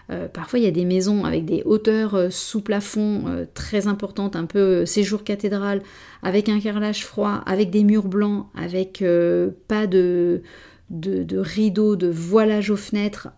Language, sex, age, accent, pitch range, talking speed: French, female, 30-49, French, 180-220 Hz, 175 wpm